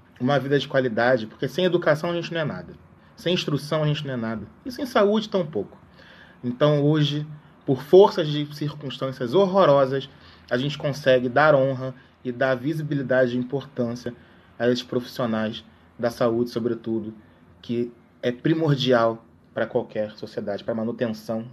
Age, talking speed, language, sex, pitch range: 20-39, 155 wpm, Portuguese, male, 115-140 Hz